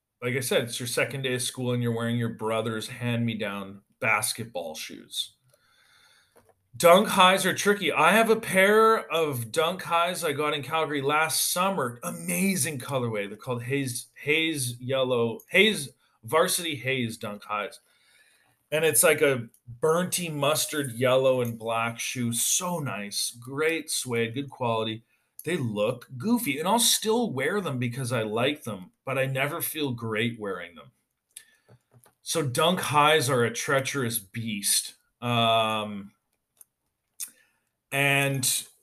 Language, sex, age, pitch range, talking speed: English, male, 40-59, 115-155 Hz, 140 wpm